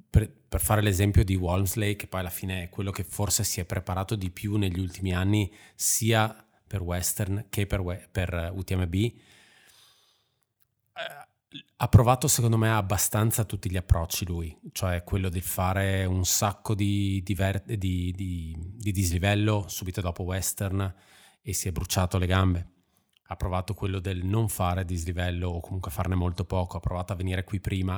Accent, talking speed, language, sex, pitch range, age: native, 160 wpm, Italian, male, 90-105 Hz, 20-39